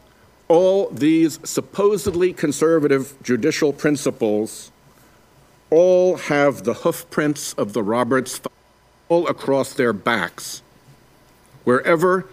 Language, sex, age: English, male, 50-69